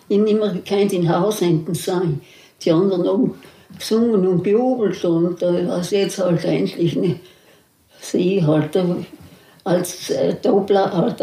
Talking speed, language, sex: 150 wpm, German, female